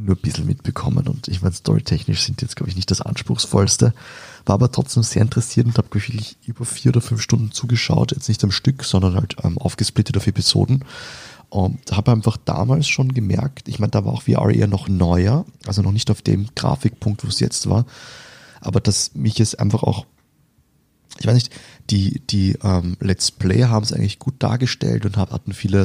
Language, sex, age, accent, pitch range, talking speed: German, male, 30-49, German, 100-125 Hz, 200 wpm